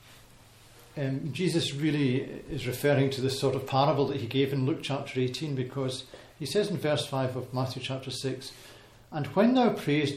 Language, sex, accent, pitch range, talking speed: English, male, British, 125-155 Hz, 185 wpm